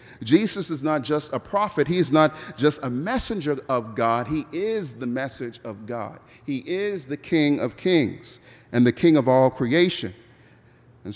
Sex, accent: male, American